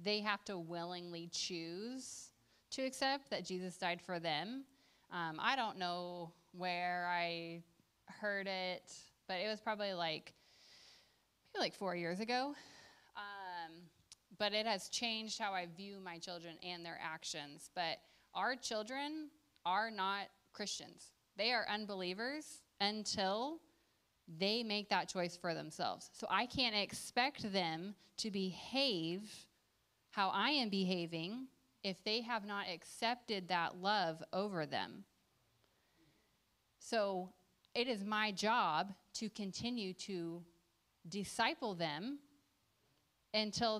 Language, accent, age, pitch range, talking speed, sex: English, American, 20-39, 180-220 Hz, 125 wpm, female